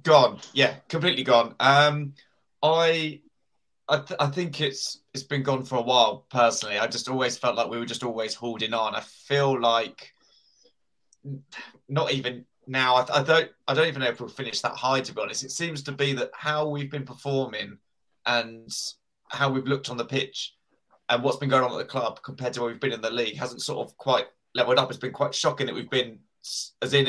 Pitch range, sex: 120-145 Hz, male